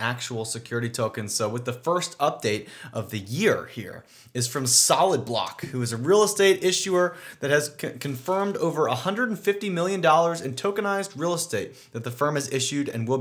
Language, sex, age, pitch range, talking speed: English, male, 30-49, 120-165 Hz, 175 wpm